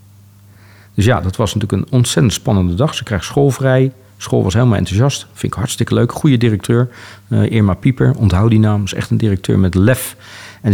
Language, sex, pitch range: Dutch, male, 100-120 Hz